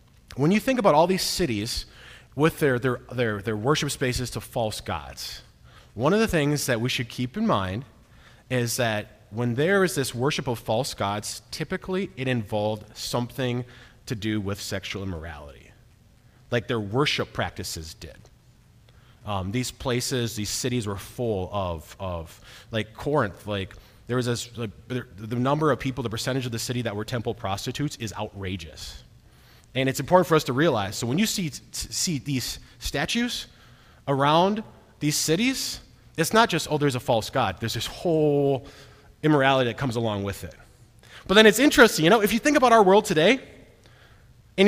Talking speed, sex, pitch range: 175 wpm, male, 110-165 Hz